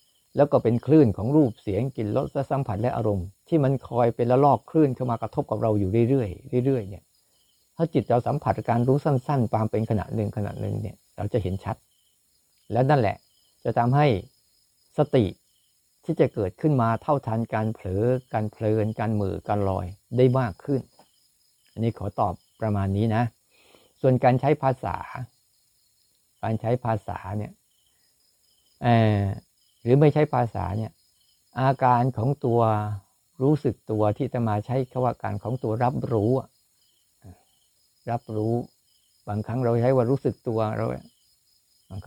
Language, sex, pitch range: Thai, male, 105-130 Hz